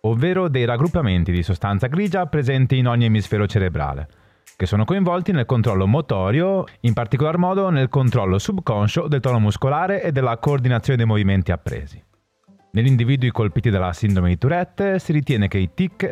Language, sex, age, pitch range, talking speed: Italian, male, 30-49, 100-155 Hz, 165 wpm